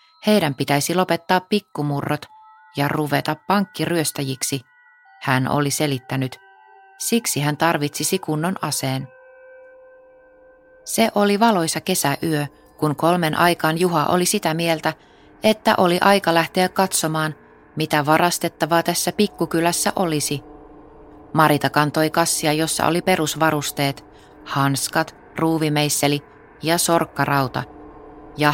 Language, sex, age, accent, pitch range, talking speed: Finnish, female, 20-39, native, 145-170 Hz, 100 wpm